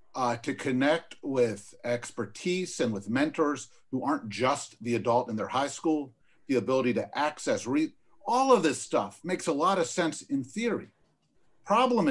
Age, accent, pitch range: 50-69, American, 120-170 Hz